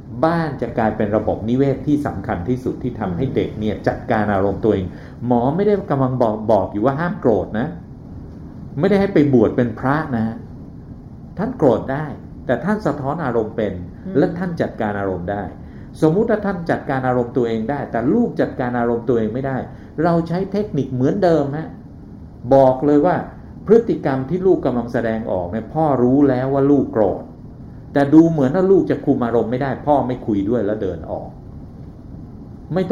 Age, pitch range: 60-79, 110-145 Hz